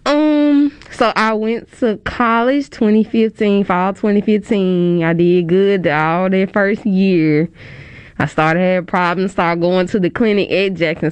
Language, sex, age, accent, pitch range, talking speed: English, female, 20-39, American, 170-210 Hz, 145 wpm